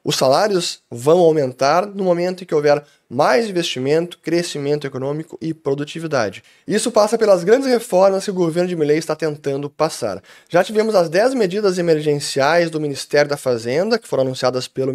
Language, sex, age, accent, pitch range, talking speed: Portuguese, male, 10-29, Brazilian, 145-195 Hz, 170 wpm